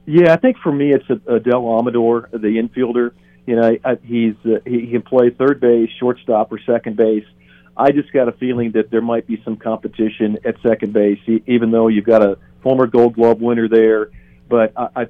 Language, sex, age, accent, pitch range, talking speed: English, male, 50-69, American, 110-125 Hz, 195 wpm